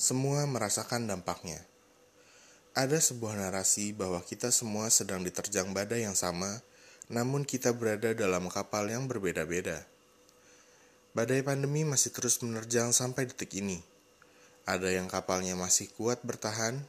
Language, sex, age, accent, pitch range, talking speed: Indonesian, male, 20-39, native, 100-125 Hz, 125 wpm